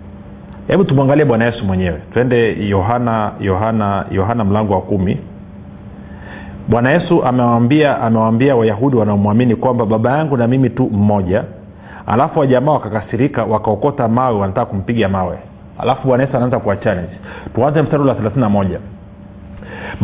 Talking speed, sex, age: 130 wpm, male, 40-59